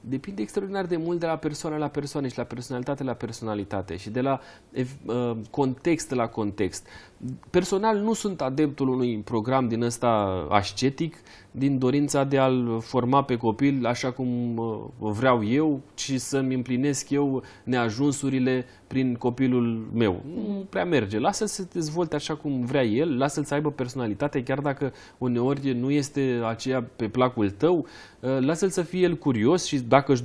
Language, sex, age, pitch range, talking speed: Romanian, male, 30-49, 120-160 Hz, 160 wpm